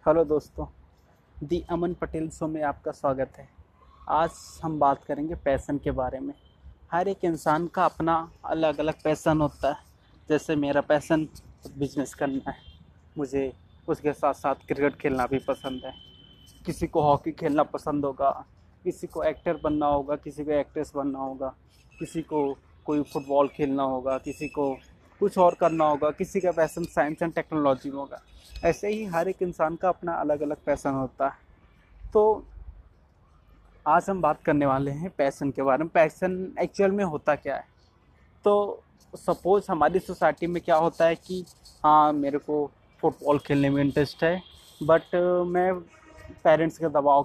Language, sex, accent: Hindi, male, native